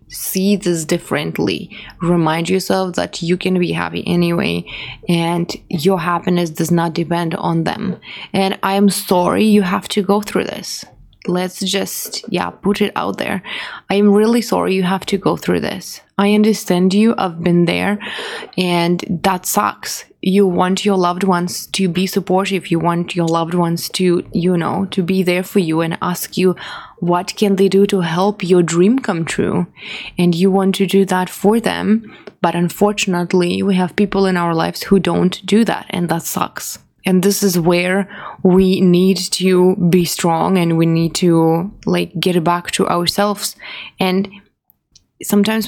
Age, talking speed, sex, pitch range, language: 20-39, 175 wpm, female, 175-205 Hz, English